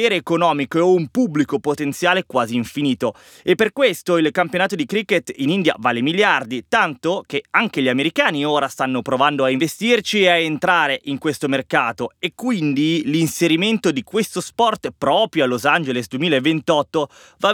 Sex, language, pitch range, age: male, Italian, 130-215 Hz, 30-49